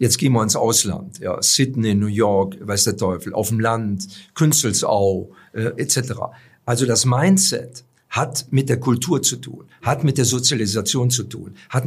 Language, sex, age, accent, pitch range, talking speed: German, male, 50-69, German, 115-135 Hz, 170 wpm